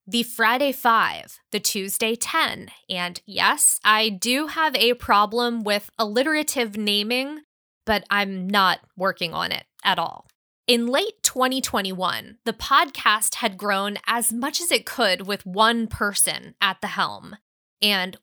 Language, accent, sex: English, American, female